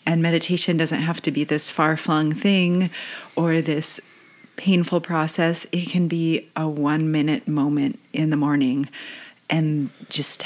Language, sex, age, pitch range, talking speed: English, female, 30-49, 150-175 Hz, 140 wpm